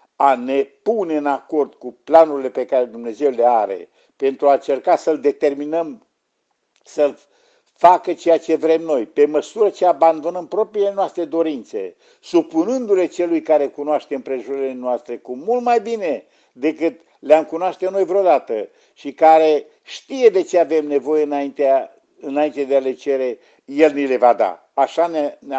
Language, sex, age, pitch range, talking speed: Romanian, male, 60-79, 140-225 Hz, 155 wpm